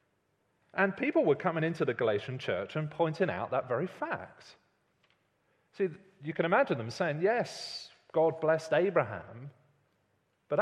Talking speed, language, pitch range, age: 140 wpm, English, 115-175 Hz, 30-49